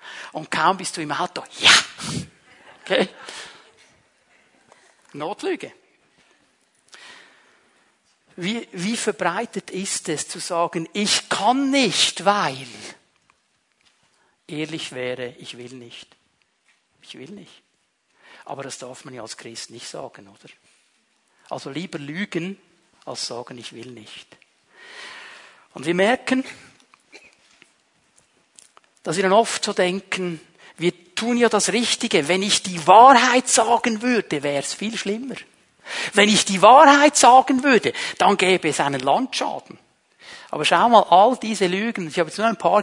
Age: 60-79